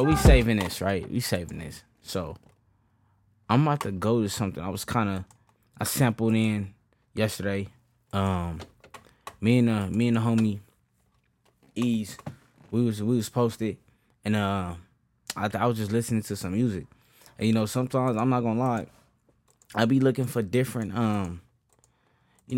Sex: male